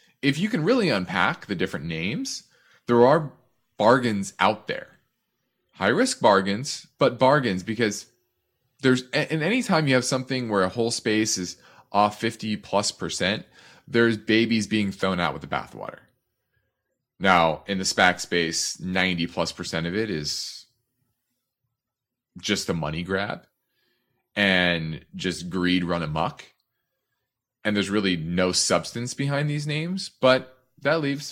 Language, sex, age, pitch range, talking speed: English, male, 30-49, 95-130 Hz, 135 wpm